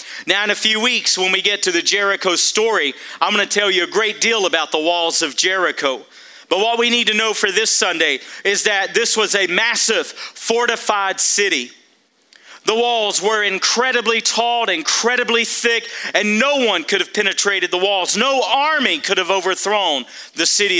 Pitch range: 190-245 Hz